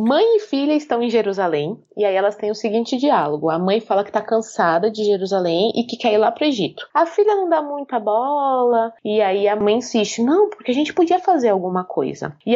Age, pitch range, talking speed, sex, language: 20-39, 200-270 Hz, 230 wpm, female, Portuguese